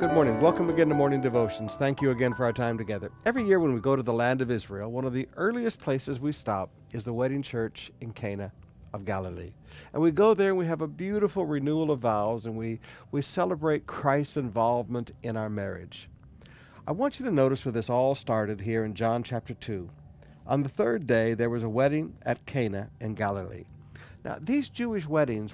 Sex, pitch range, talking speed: male, 110-140 Hz, 210 wpm